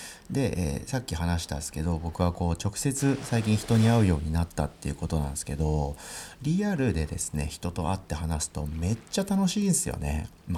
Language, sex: Japanese, male